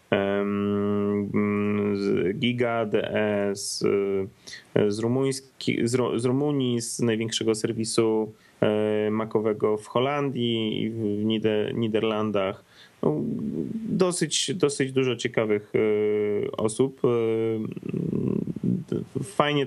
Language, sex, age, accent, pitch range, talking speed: Polish, male, 20-39, native, 100-115 Hz, 75 wpm